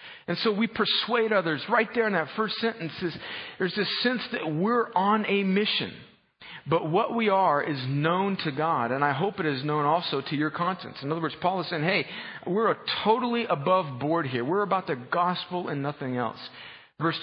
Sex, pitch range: male, 150-200 Hz